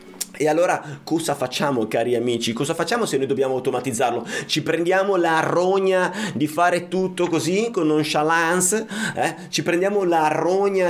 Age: 30-49